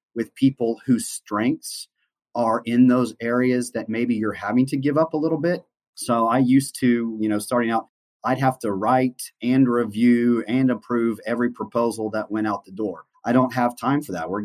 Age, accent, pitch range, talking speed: 30-49, American, 115-130 Hz, 200 wpm